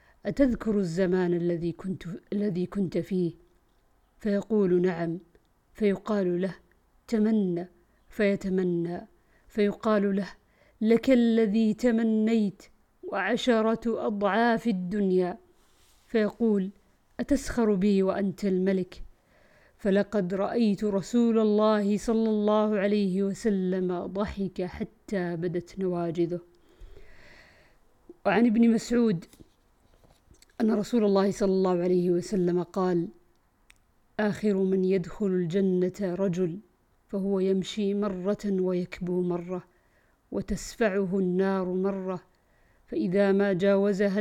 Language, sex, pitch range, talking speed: Arabic, female, 185-215 Hz, 90 wpm